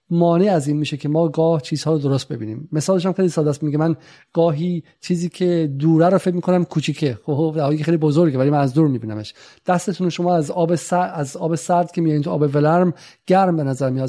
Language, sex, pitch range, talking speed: Persian, male, 140-175 Hz, 210 wpm